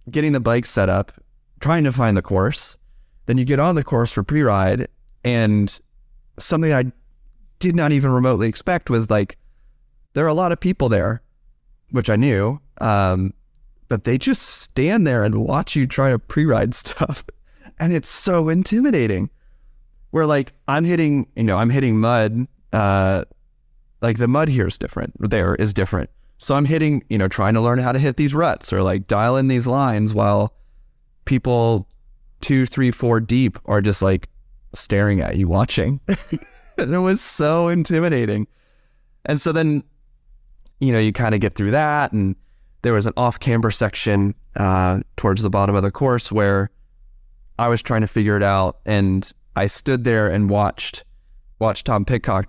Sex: male